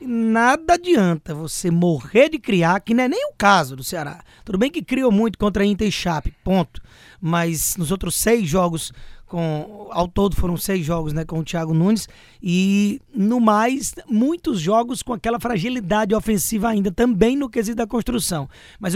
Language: Portuguese